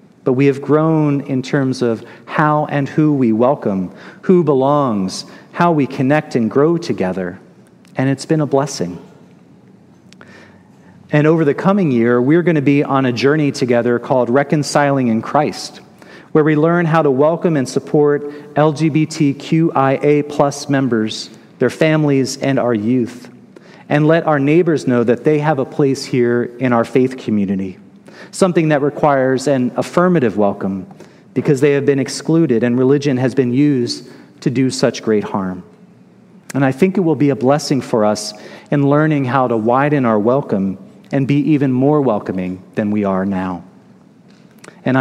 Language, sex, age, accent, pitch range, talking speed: English, male, 40-59, American, 120-150 Hz, 160 wpm